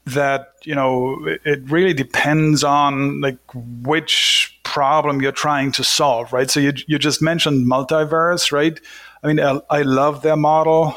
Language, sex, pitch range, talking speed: English, male, 135-155 Hz, 160 wpm